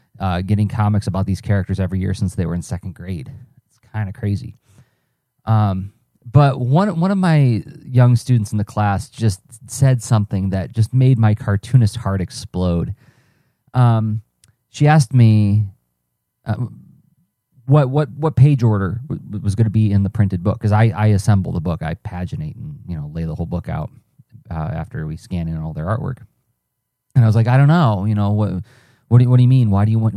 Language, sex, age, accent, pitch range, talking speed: English, male, 30-49, American, 100-125 Hz, 205 wpm